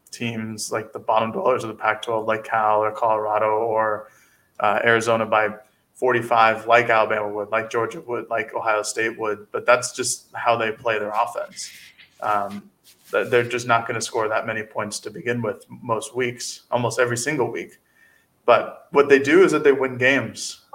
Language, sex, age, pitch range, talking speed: English, male, 20-39, 110-120 Hz, 180 wpm